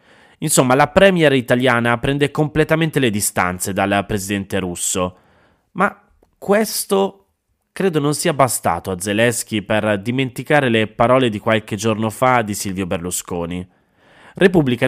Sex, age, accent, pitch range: male, 20-39, native, 100-130 Hz